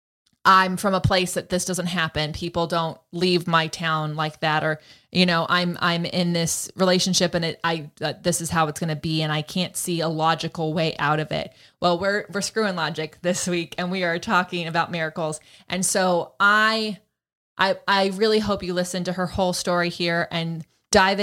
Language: English